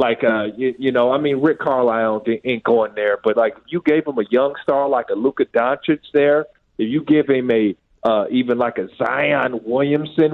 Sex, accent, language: male, American, English